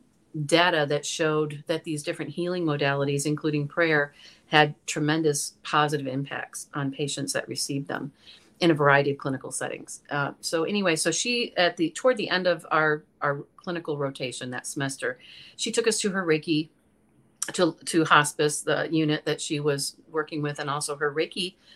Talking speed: 170 wpm